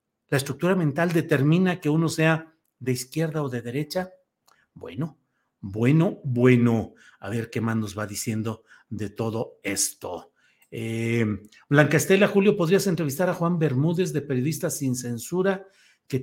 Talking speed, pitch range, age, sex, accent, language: 145 wpm, 125-170 Hz, 50-69, male, Mexican, Spanish